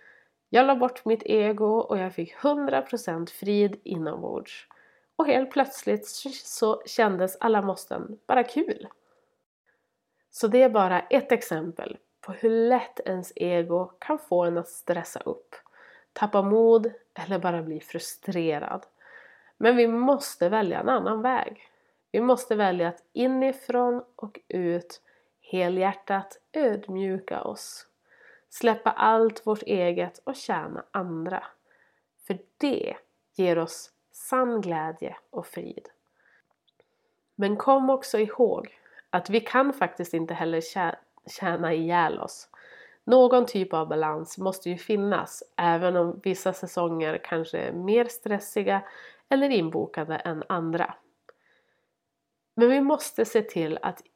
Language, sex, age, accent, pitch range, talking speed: Swedish, female, 30-49, native, 175-245 Hz, 125 wpm